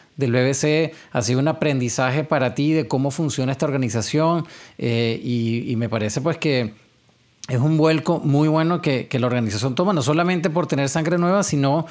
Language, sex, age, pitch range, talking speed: English, male, 30-49, 125-160 Hz, 185 wpm